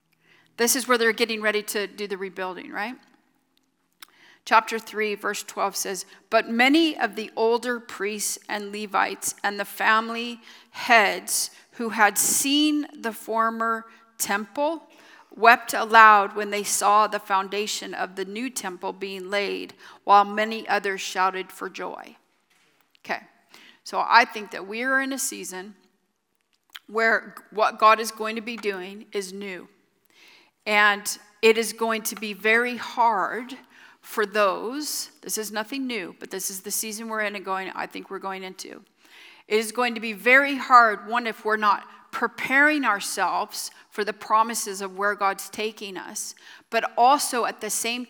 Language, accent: English, American